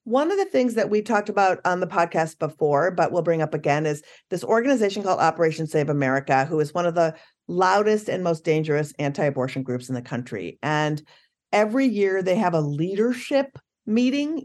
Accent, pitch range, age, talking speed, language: American, 160-230 Hz, 50-69, 190 wpm, English